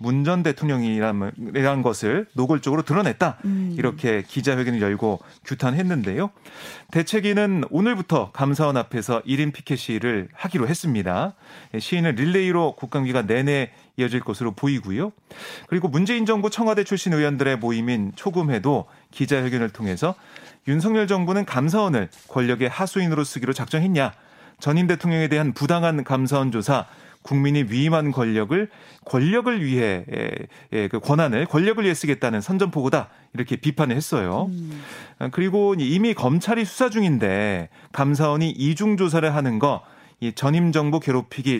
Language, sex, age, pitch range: Korean, male, 30-49, 125-175 Hz